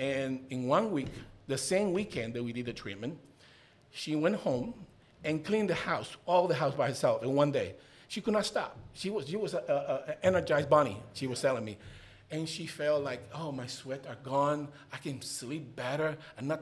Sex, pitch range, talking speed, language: male, 125-155 Hz, 215 wpm, English